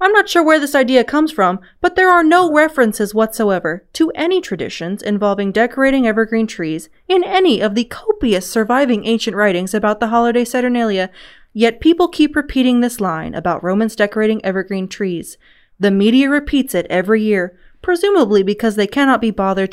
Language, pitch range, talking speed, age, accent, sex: English, 190-270 Hz, 170 wpm, 20-39, American, female